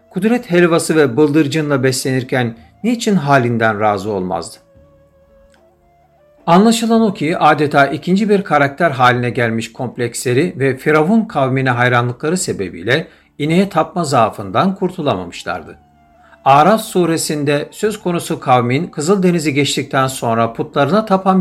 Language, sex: Turkish, male